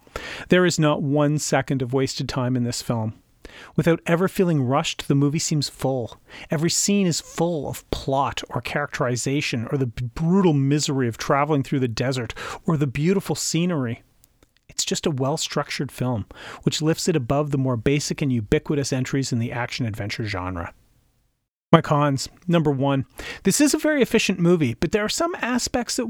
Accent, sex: American, male